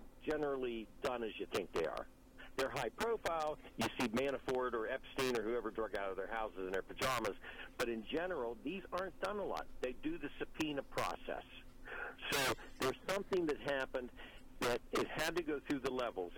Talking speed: 185 wpm